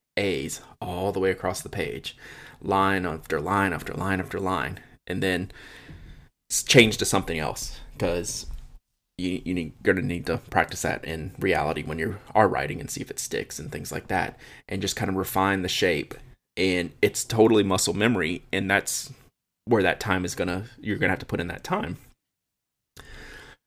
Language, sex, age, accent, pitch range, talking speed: English, male, 20-39, American, 90-105 Hz, 175 wpm